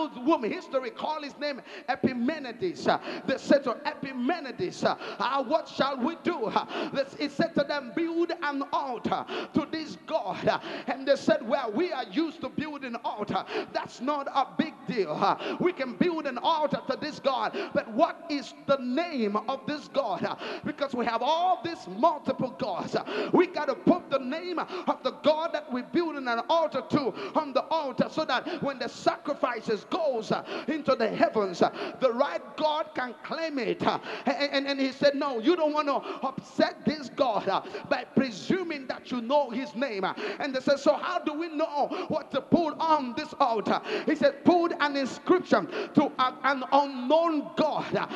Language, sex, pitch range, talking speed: English, male, 265-320 Hz, 190 wpm